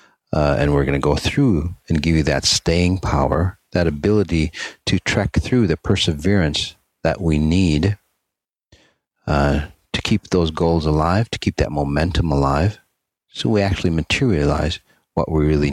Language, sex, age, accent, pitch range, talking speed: English, male, 40-59, American, 75-95 Hz, 155 wpm